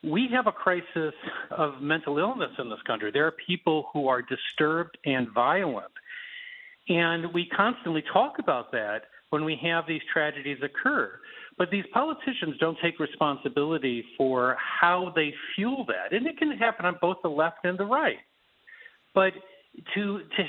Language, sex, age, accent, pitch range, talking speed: English, male, 50-69, American, 150-220 Hz, 160 wpm